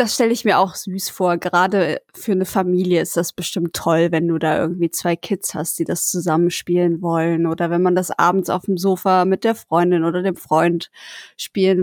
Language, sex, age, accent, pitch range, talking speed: German, female, 20-39, German, 180-225 Hz, 210 wpm